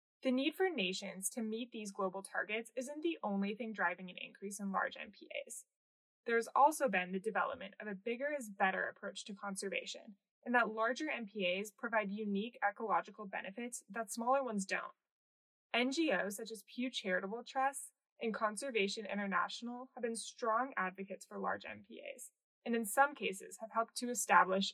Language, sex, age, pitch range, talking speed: English, female, 20-39, 200-250 Hz, 160 wpm